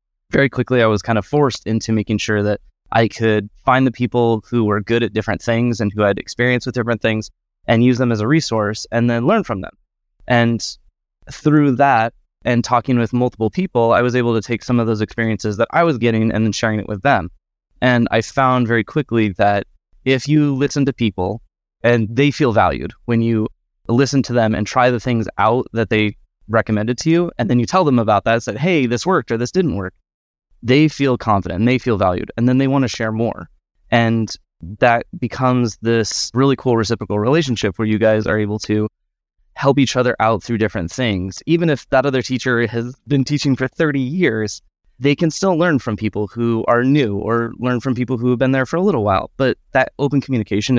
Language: English